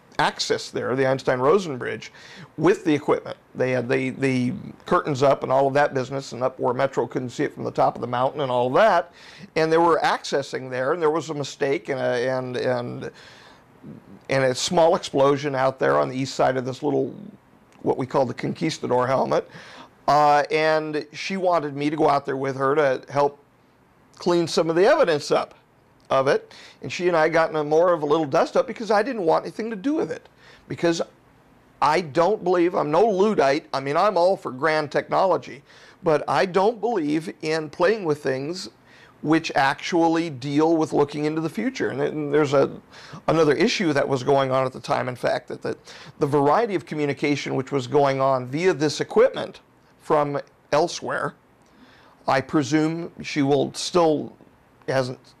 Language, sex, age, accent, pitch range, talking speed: English, male, 50-69, American, 135-170 Hz, 195 wpm